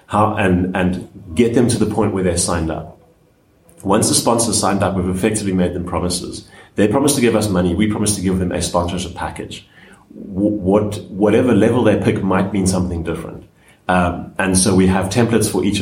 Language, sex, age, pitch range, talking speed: English, male, 30-49, 90-110 Hz, 205 wpm